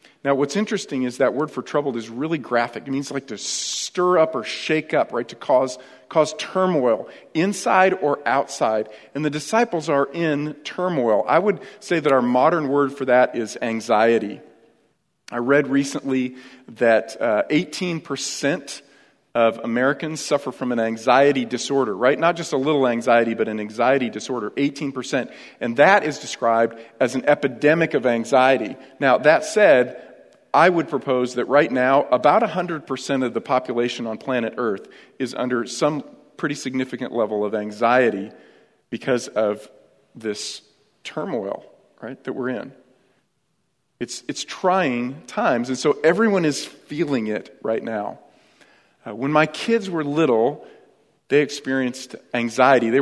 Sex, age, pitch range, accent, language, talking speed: male, 40-59, 120-150 Hz, American, English, 150 wpm